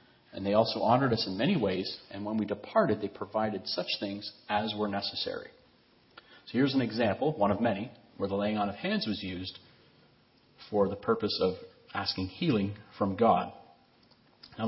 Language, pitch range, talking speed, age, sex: English, 95-120 Hz, 175 wpm, 40-59, male